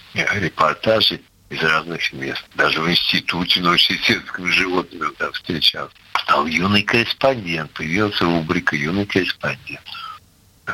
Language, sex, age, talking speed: Russian, male, 60-79, 105 wpm